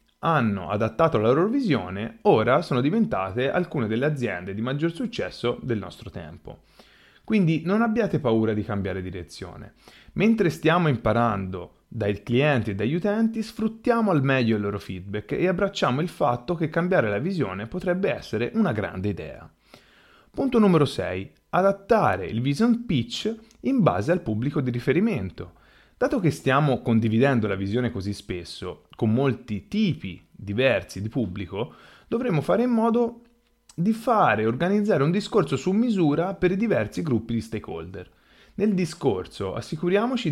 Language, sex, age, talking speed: Italian, male, 30-49, 145 wpm